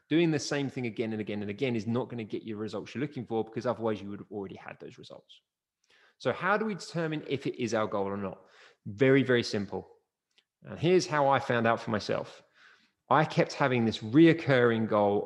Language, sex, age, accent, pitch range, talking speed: English, male, 20-39, British, 110-160 Hz, 225 wpm